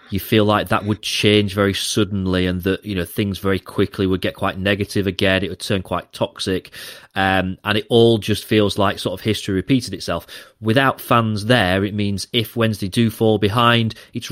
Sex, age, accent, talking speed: male, 30-49, British, 200 wpm